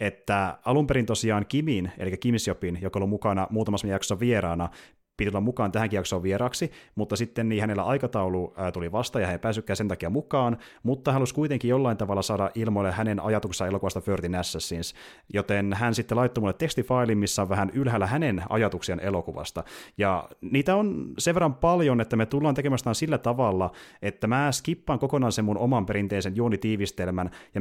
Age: 30-49